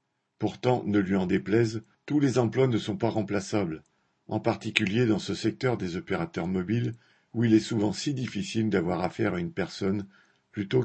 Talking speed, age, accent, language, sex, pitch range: 175 wpm, 50-69, French, French, male, 100-120 Hz